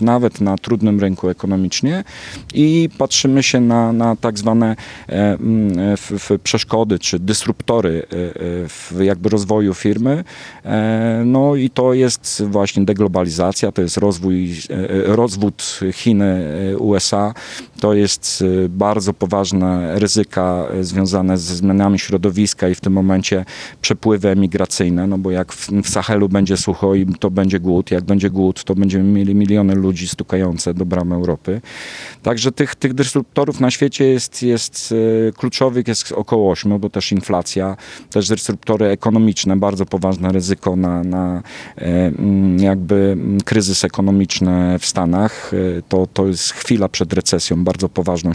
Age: 40-59